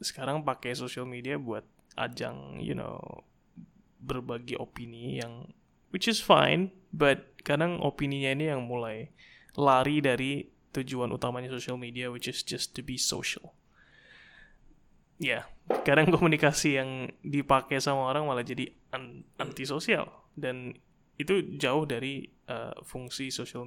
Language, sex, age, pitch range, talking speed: Indonesian, male, 20-39, 125-155 Hz, 125 wpm